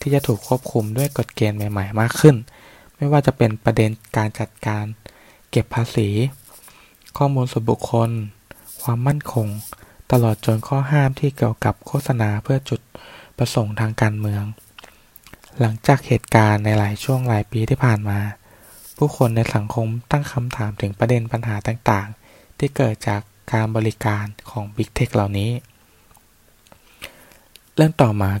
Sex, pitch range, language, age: male, 105-125 Hz, Thai, 20-39